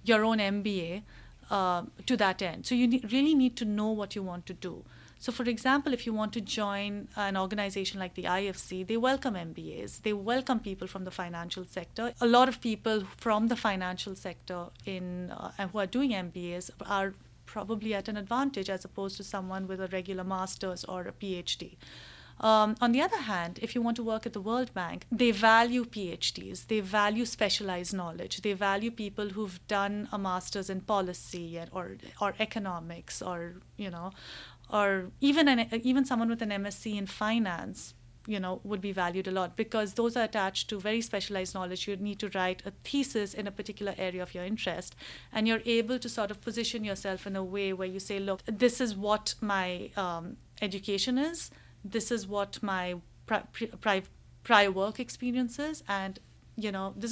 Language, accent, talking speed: English, Indian, 190 wpm